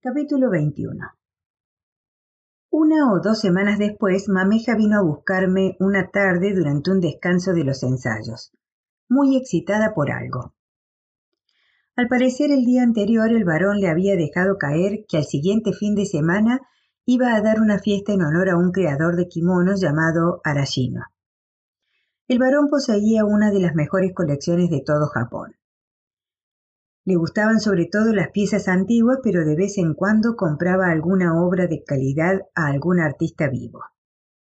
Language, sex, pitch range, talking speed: Spanish, female, 165-225 Hz, 150 wpm